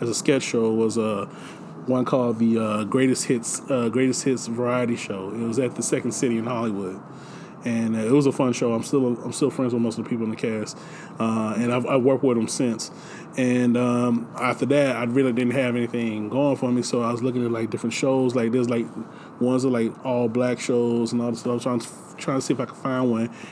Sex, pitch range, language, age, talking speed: male, 120-140 Hz, English, 20-39, 255 wpm